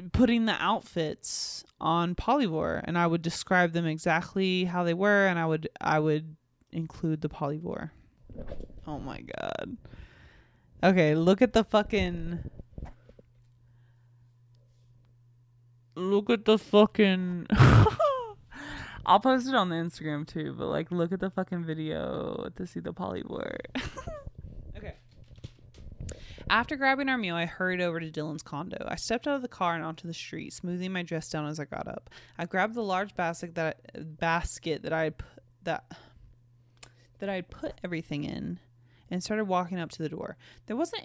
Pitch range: 150-195 Hz